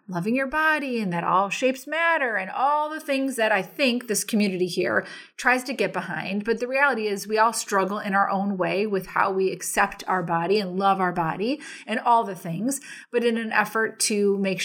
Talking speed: 215 wpm